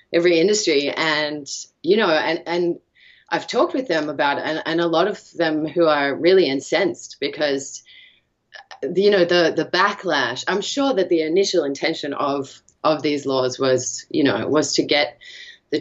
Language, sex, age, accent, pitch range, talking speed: English, female, 30-49, Australian, 135-165 Hz, 180 wpm